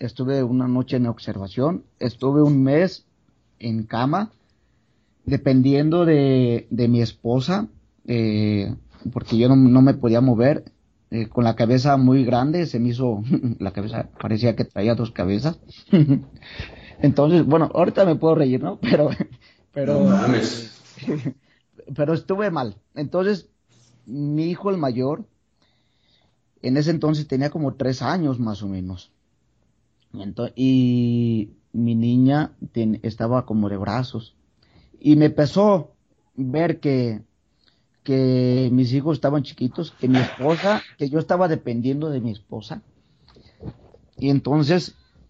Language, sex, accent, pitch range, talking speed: English, male, Mexican, 115-150 Hz, 130 wpm